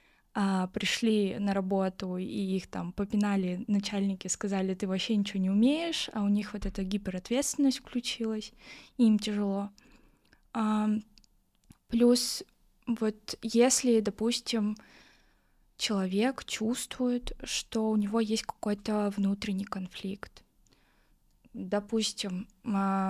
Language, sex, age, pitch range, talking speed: Russian, female, 10-29, 200-240 Hz, 95 wpm